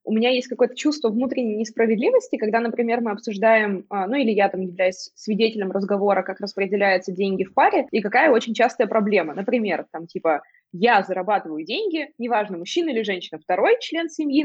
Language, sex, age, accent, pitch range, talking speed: Russian, female, 20-39, native, 200-280 Hz, 170 wpm